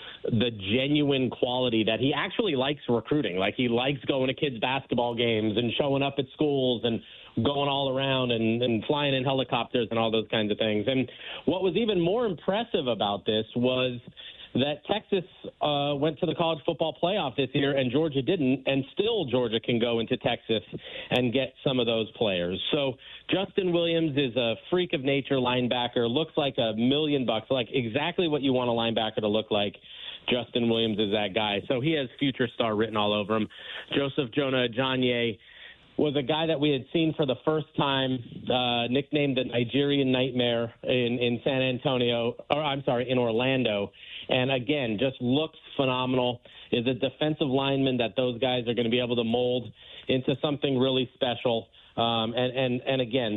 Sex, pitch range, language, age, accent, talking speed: male, 120-140 Hz, English, 40-59, American, 185 wpm